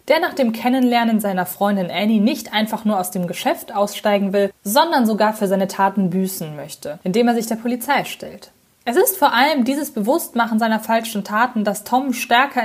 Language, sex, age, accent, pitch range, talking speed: German, female, 20-39, German, 200-245 Hz, 190 wpm